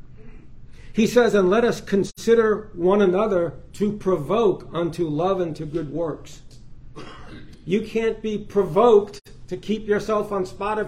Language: English